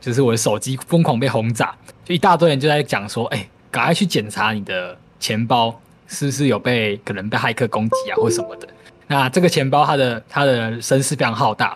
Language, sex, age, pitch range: Chinese, male, 20-39, 110-150 Hz